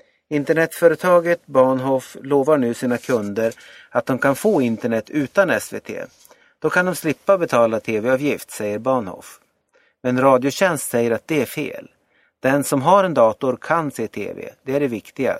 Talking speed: 155 wpm